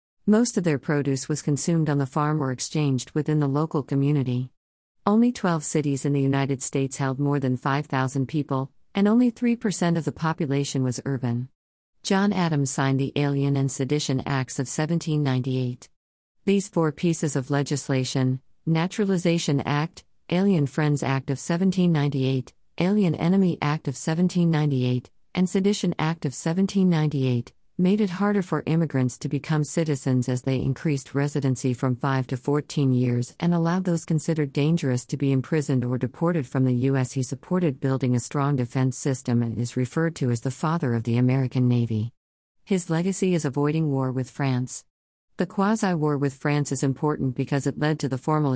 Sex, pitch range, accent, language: female, 130-165 Hz, American, English